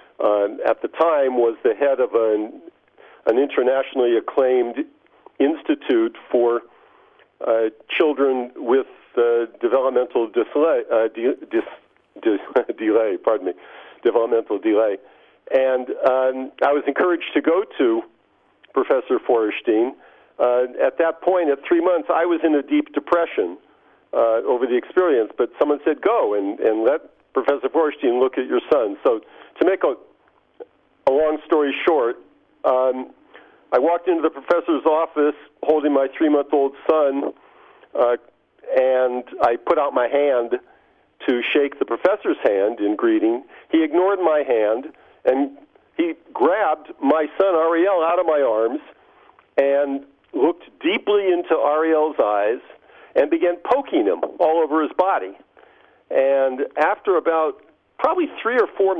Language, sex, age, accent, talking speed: English, male, 50-69, American, 140 wpm